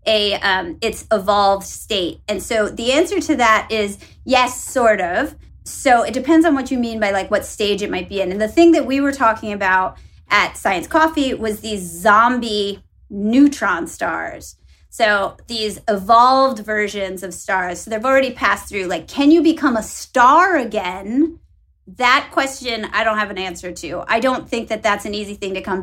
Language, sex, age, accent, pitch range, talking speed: English, female, 30-49, American, 200-265 Hz, 190 wpm